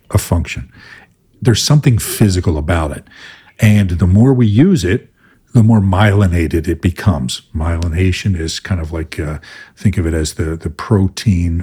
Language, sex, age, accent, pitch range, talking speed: English, male, 50-69, American, 85-110 Hz, 160 wpm